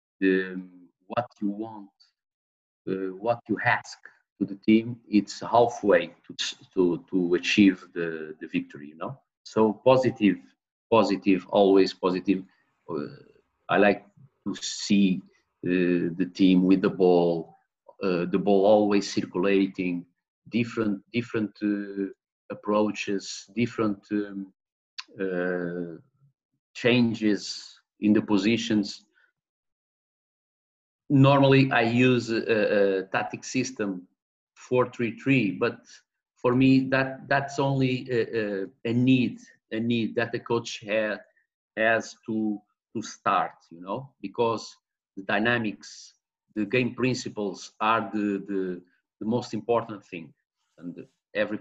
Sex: male